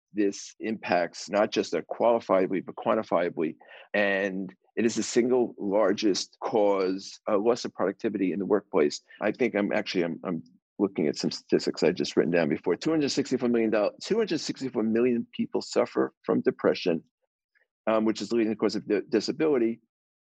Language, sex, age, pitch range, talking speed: English, male, 50-69, 100-120 Hz, 165 wpm